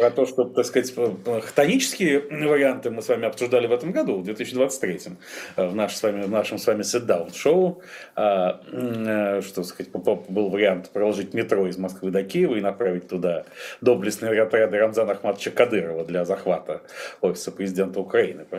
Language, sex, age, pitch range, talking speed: Russian, male, 40-59, 105-130 Hz, 145 wpm